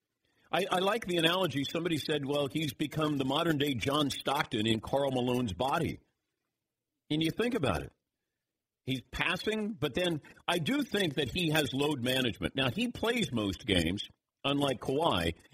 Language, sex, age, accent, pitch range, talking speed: English, male, 50-69, American, 120-160 Hz, 160 wpm